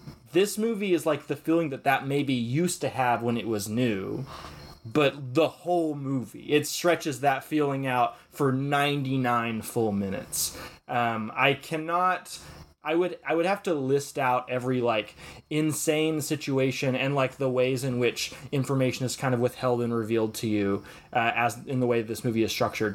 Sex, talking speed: male, 185 wpm